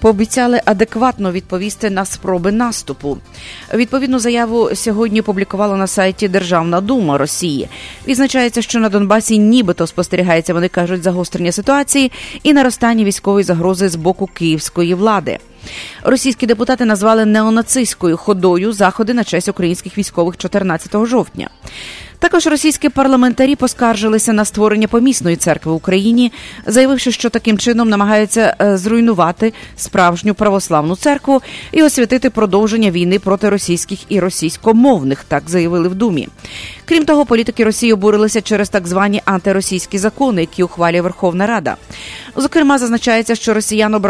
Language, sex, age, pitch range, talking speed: English, female, 30-49, 185-235 Hz, 130 wpm